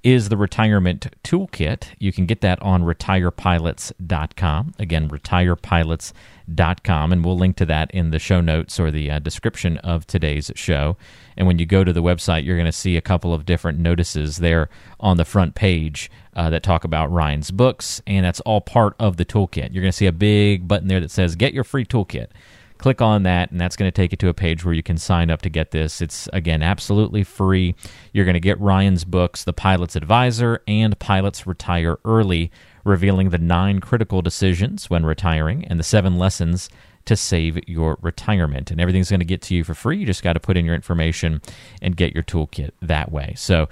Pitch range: 85-100 Hz